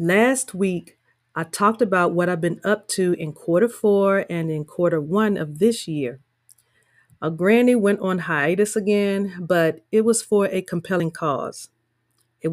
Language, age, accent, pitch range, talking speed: English, 40-59, American, 165-205 Hz, 165 wpm